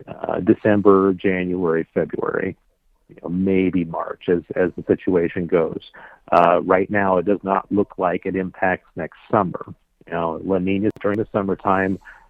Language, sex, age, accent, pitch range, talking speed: English, male, 50-69, American, 90-105 Hz, 155 wpm